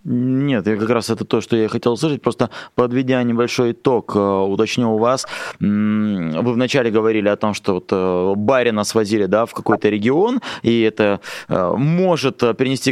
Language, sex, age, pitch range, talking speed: Russian, male, 20-39, 110-135 Hz, 160 wpm